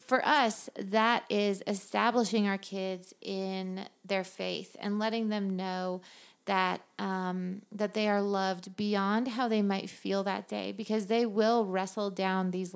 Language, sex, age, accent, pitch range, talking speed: English, female, 30-49, American, 190-230 Hz, 155 wpm